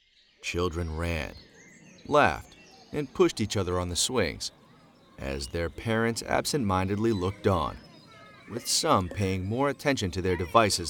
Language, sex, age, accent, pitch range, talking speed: English, male, 30-49, American, 85-110 Hz, 130 wpm